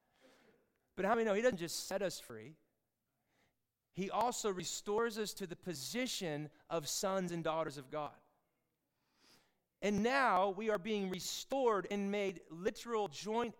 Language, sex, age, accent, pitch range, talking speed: English, male, 30-49, American, 145-190 Hz, 145 wpm